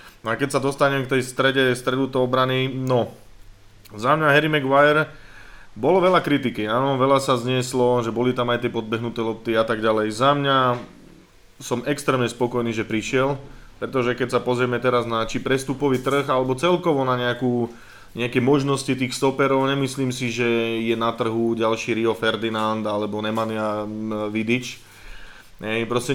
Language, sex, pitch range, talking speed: Slovak, male, 110-130 Hz, 165 wpm